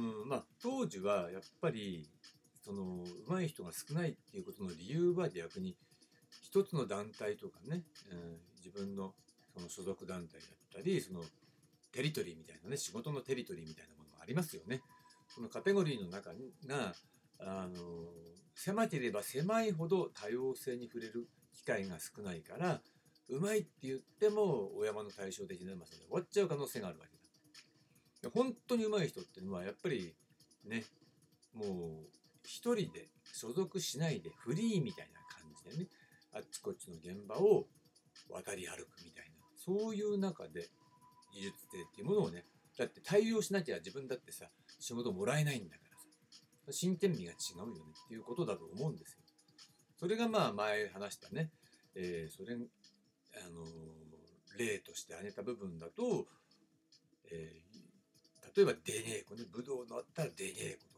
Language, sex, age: Japanese, male, 60-79